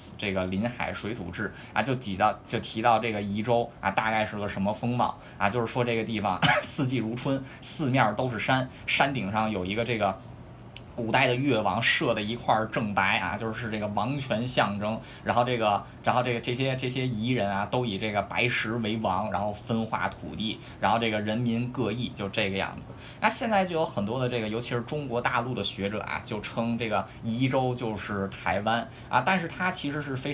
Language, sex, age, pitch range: Chinese, male, 20-39, 105-130 Hz